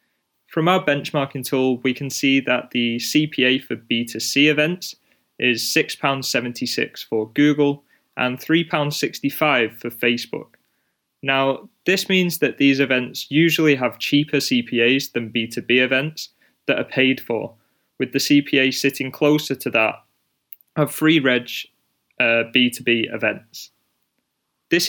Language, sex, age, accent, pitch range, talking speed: English, male, 20-39, British, 120-145 Hz, 125 wpm